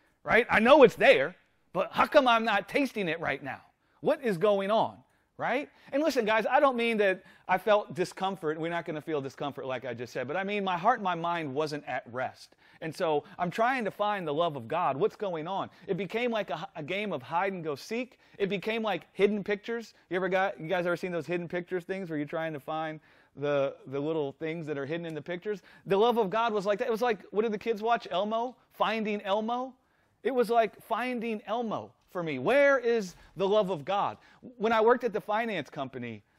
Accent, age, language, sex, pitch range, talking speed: American, 30-49, English, male, 155-220 Hz, 235 wpm